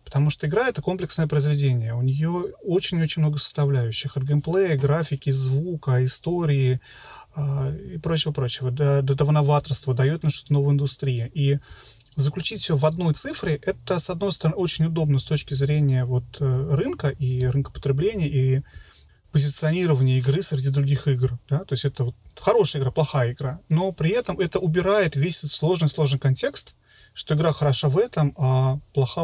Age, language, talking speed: 30-49, Russian, 160 wpm